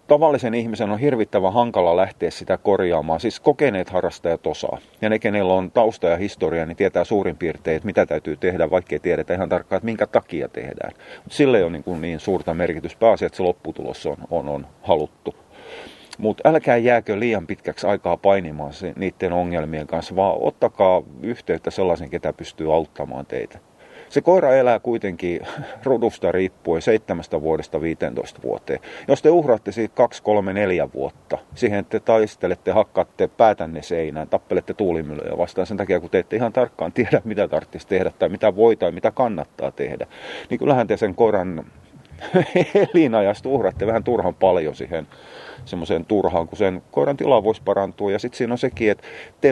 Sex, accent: male, native